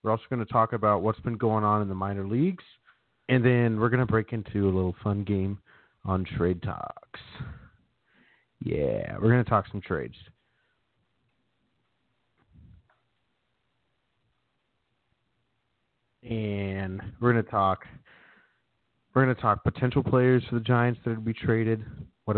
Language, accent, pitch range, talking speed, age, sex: English, American, 95-120 Hz, 145 wpm, 40-59, male